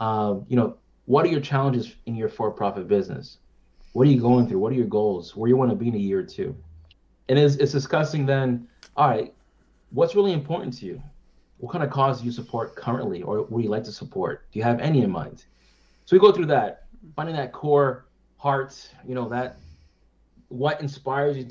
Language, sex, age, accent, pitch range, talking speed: English, male, 20-39, American, 115-145 Hz, 220 wpm